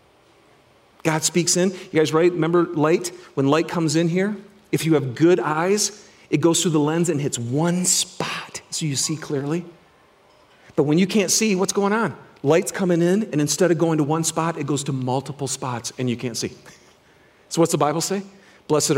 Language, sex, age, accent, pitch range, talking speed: English, male, 40-59, American, 135-180 Hz, 200 wpm